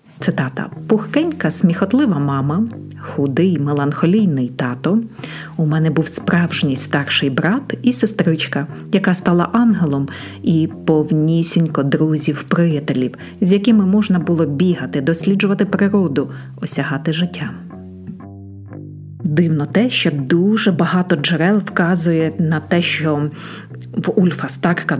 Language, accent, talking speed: Ukrainian, native, 100 wpm